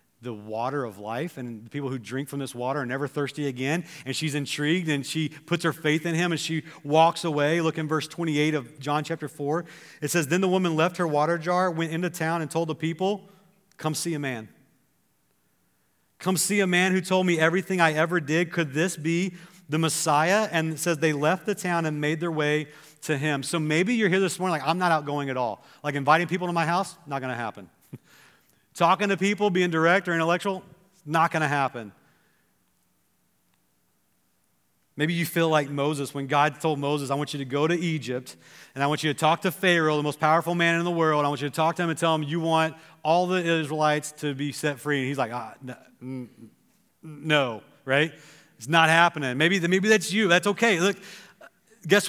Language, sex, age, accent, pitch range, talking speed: English, male, 40-59, American, 145-175 Hz, 215 wpm